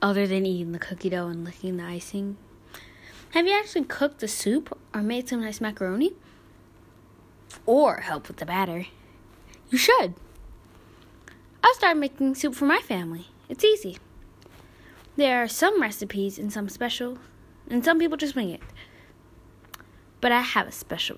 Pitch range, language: 190-285 Hz, English